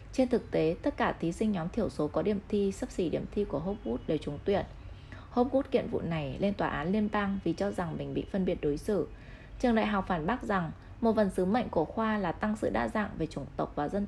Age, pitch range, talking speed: 20-39, 170-225 Hz, 265 wpm